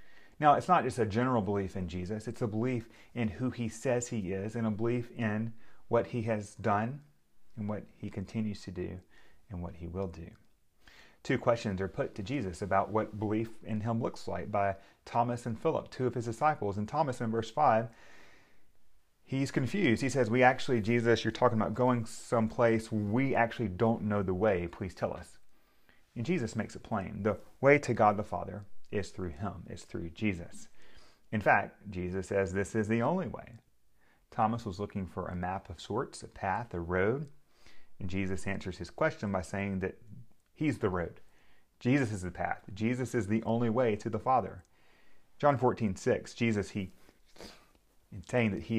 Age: 30-49